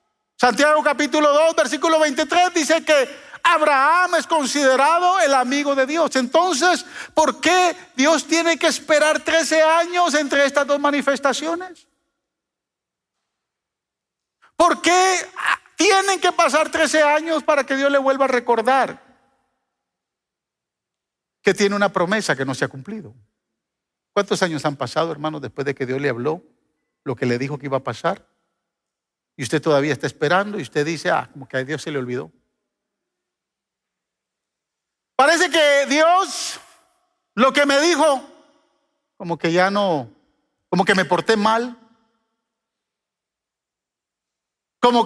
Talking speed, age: 135 wpm, 50-69